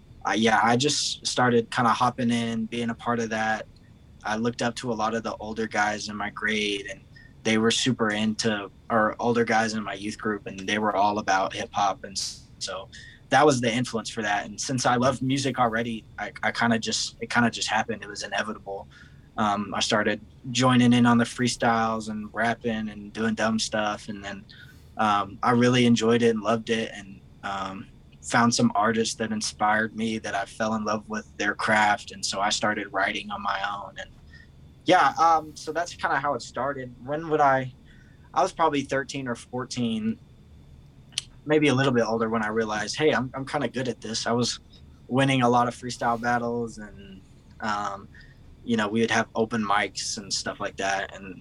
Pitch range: 105-125 Hz